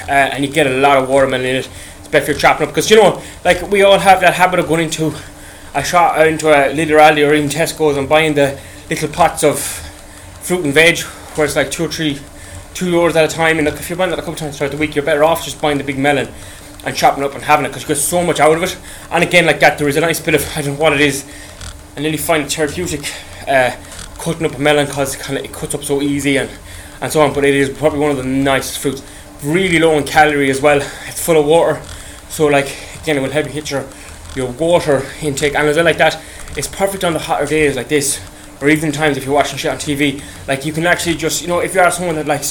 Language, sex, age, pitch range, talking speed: English, male, 20-39, 140-160 Hz, 280 wpm